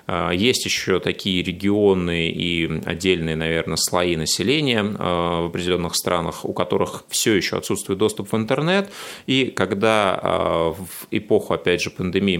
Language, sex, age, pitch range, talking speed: Russian, male, 30-49, 85-100 Hz, 130 wpm